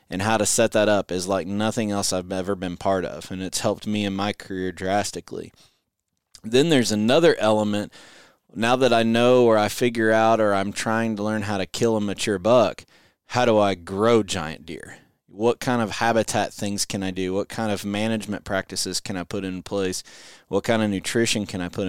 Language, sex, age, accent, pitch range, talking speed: English, male, 20-39, American, 95-115 Hz, 210 wpm